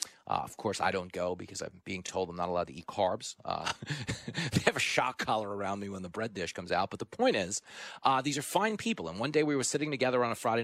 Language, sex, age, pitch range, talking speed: English, male, 30-49, 110-155 Hz, 275 wpm